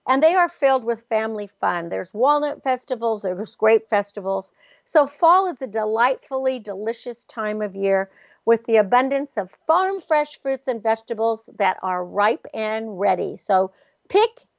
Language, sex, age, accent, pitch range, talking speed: English, female, 60-79, American, 210-295 Hz, 155 wpm